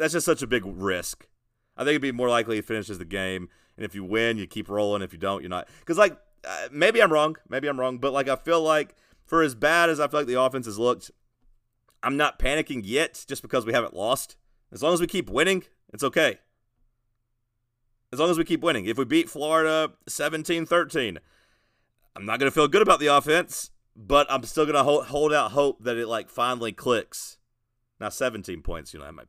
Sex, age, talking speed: male, 30-49, 225 wpm